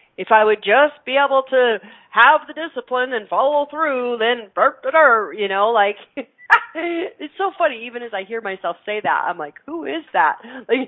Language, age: English, 40-59